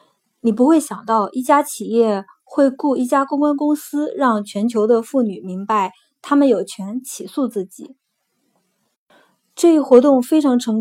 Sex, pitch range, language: female, 225-285 Hz, Chinese